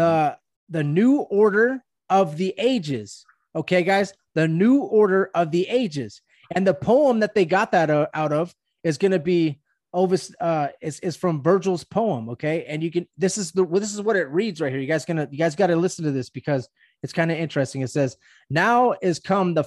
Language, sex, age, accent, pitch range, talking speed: English, male, 20-39, American, 160-210 Hz, 215 wpm